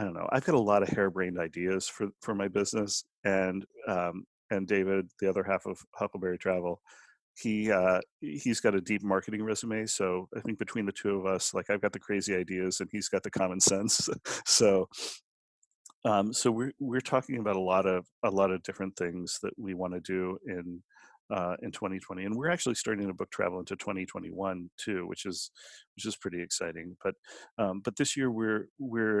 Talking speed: 205 wpm